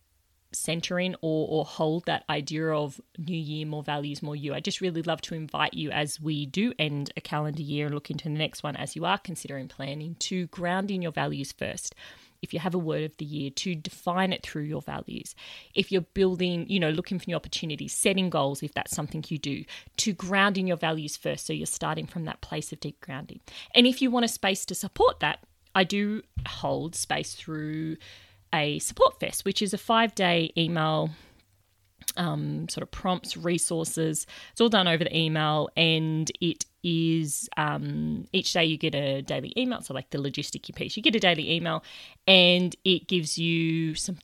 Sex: female